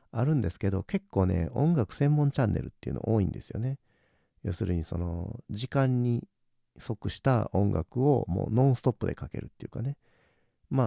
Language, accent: Japanese, native